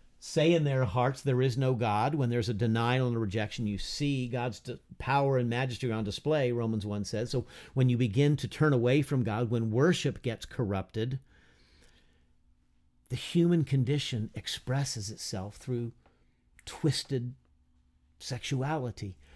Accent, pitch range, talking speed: American, 110-140 Hz, 145 wpm